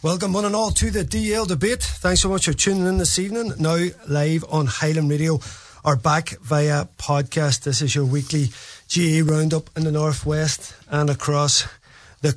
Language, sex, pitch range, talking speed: English, male, 145-175 Hz, 180 wpm